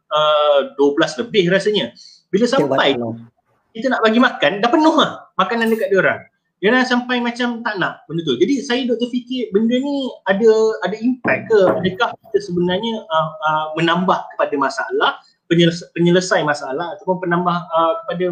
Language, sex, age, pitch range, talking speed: Malay, male, 30-49, 165-220 Hz, 165 wpm